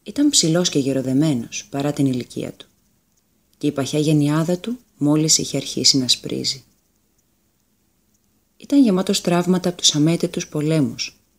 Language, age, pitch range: Greek, 30-49, 135-185 Hz